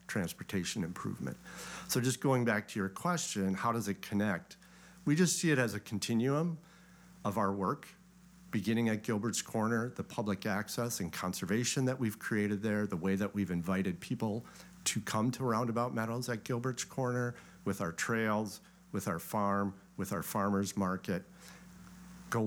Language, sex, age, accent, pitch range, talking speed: English, male, 50-69, American, 95-130 Hz, 165 wpm